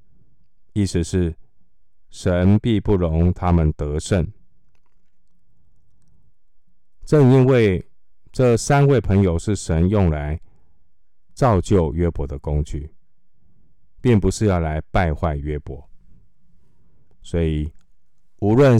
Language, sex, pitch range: Chinese, male, 80-100 Hz